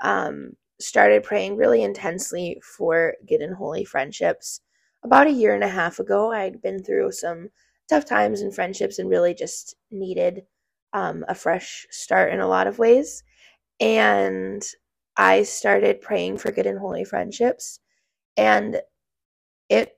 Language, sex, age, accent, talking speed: English, female, 20-39, American, 145 wpm